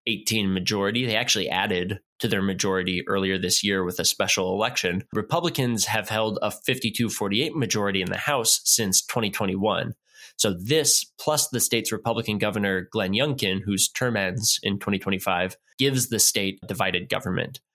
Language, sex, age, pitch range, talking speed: English, male, 20-39, 95-120 Hz, 160 wpm